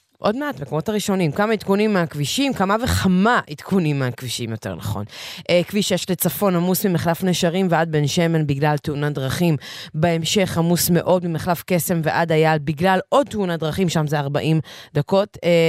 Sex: female